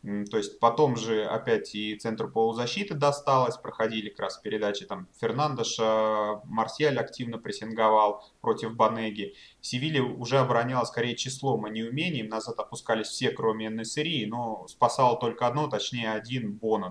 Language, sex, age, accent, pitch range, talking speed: Russian, male, 20-39, native, 115-140 Hz, 140 wpm